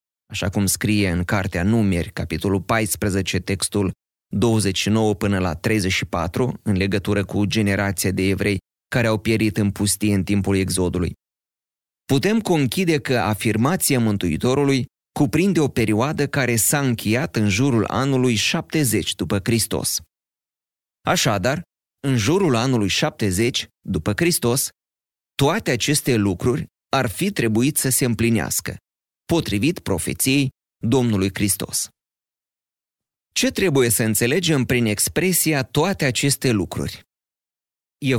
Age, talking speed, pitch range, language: 30-49, 115 wpm, 100-130 Hz, Romanian